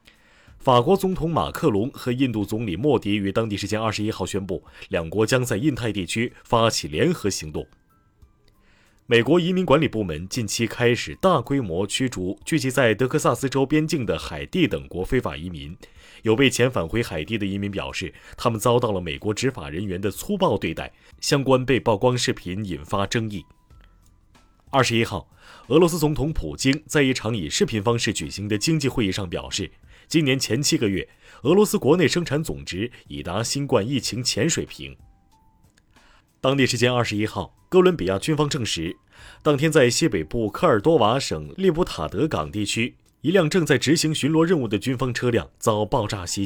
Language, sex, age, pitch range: Chinese, male, 30-49, 100-135 Hz